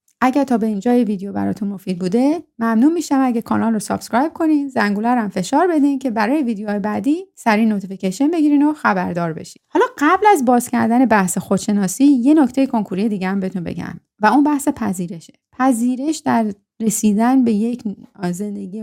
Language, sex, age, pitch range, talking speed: Persian, female, 30-49, 195-260 Hz, 165 wpm